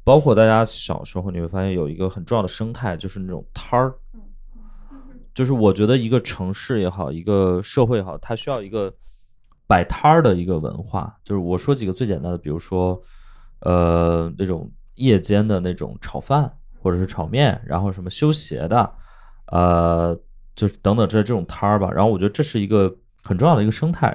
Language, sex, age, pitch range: Chinese, male, 20-39, 95-125 Hz